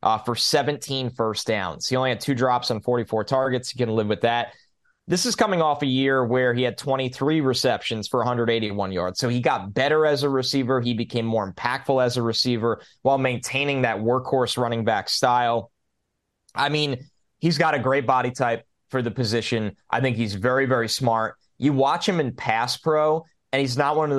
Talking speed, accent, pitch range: 200 wpm, American, 115-140 Hz